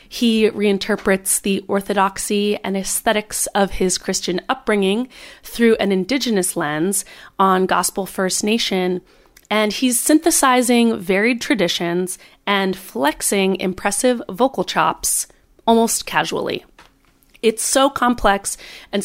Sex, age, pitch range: female, 30-49, 190-230 Hz